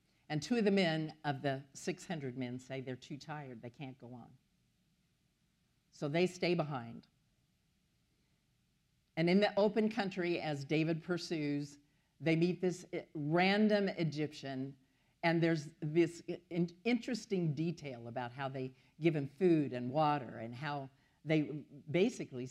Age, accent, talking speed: 50-69, American, 135 wpm